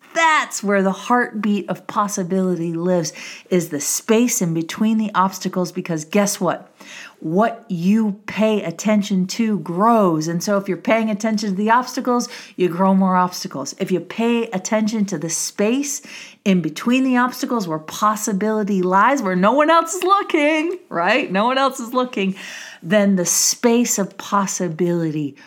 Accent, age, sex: American, 40-59, female